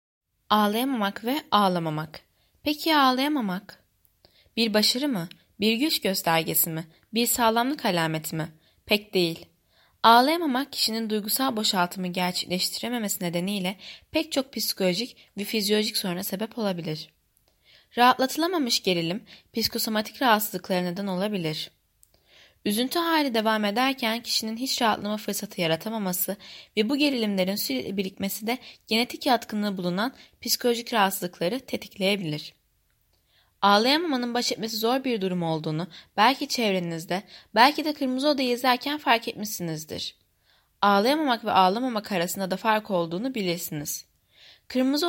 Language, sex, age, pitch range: Turkish, female, 20-39, 185-250 Hz